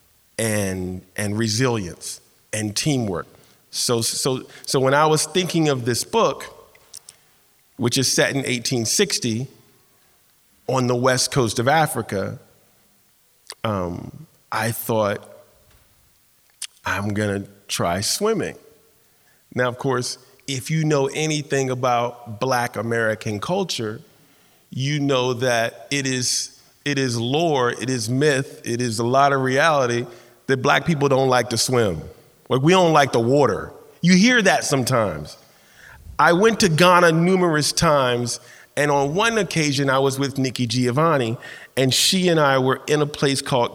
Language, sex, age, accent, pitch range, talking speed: English, male, 40-59, American, 120-150 Hz, 140 wpm